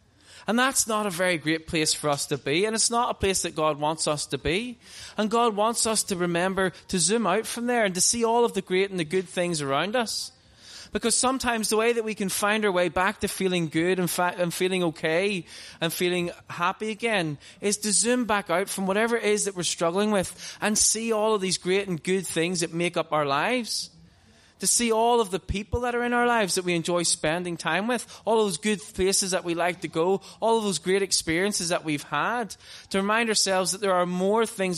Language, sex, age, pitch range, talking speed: English, male, 20-39, 165-215 Hz, 235 wpm